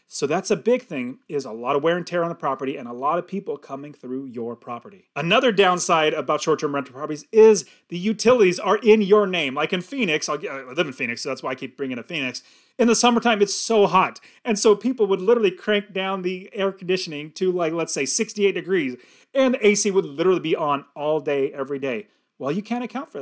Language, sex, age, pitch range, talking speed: English, male, 30-49, 155-210 Hz, 235 wpm